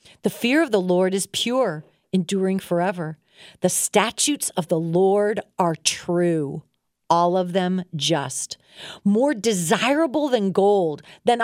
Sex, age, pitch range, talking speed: female, 40-59, 180-235 Hz, 130 wpm